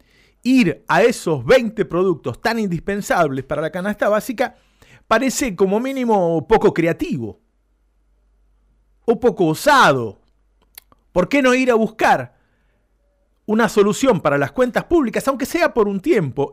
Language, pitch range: Spanish, 165-240 Hz